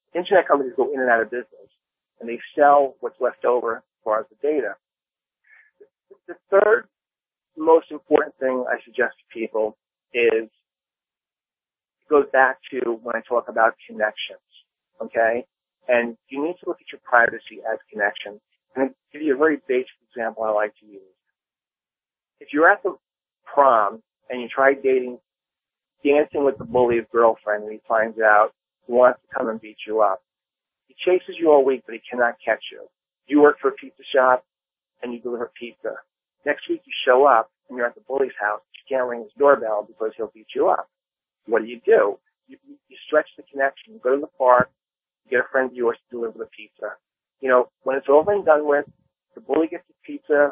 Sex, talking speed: male, 195 wpm